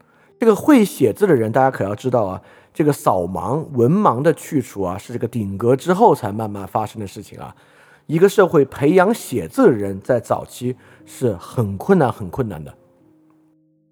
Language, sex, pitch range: Chinese, male, 105-150 Hz